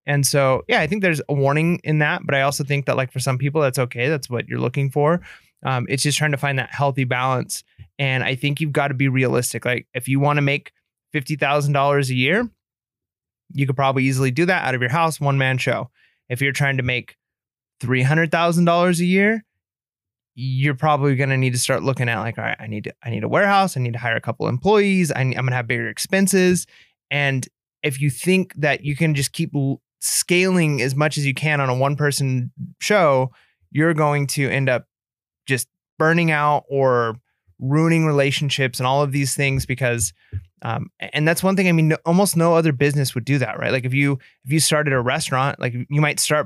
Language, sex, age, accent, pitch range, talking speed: English, male, 20-39, American, 130-155 Hz, 220 wpm